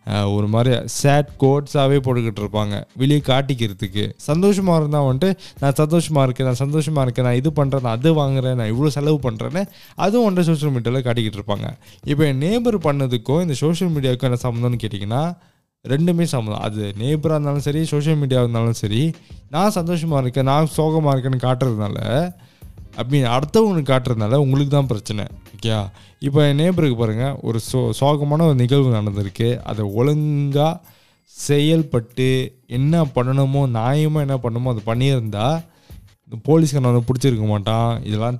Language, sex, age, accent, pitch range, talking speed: Tamil, male, 20-39, native, 115-150 Hz, 145 wpm